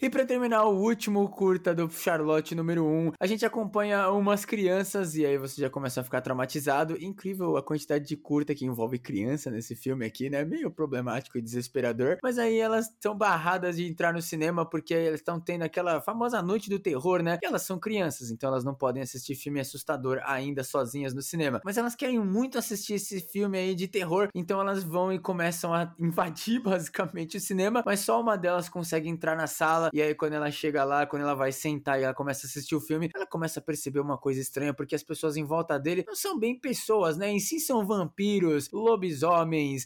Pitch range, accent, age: 145-195 Hz, Brazilian, 20-39